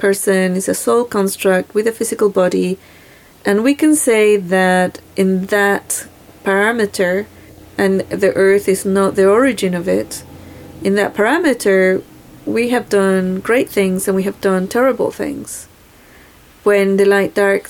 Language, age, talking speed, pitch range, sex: English, 30-49, 150 wpm, 185-205 Hz, female